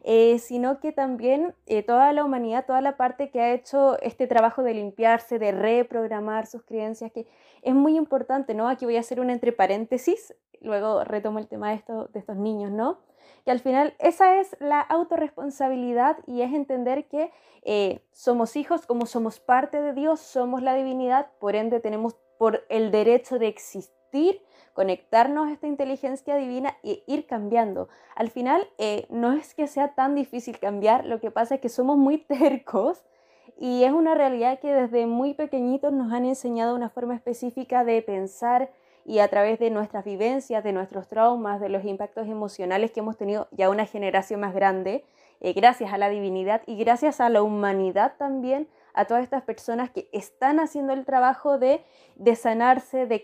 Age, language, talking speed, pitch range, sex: 20-39, Spanish, 180 wpm, 215-275 Hz, female